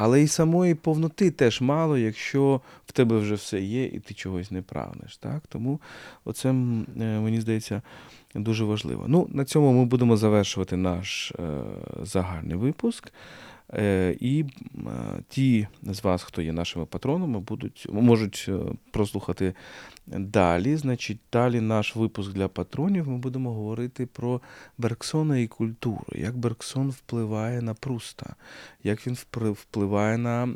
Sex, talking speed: male, 130 wpm